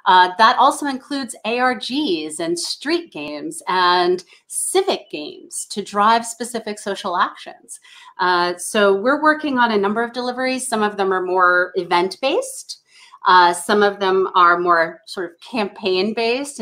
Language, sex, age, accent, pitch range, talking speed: English, female, 30-49, American, 185-275 Hz, 140 wpm